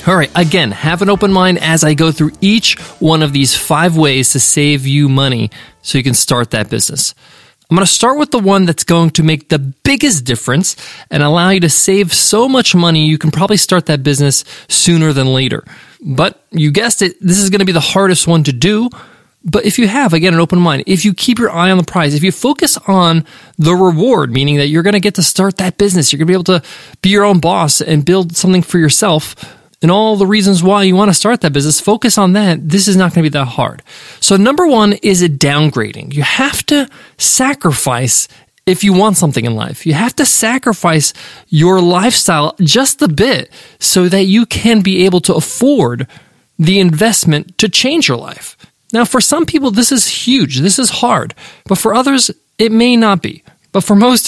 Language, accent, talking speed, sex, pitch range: English, American, 215 wpm, male, 150-205 Hz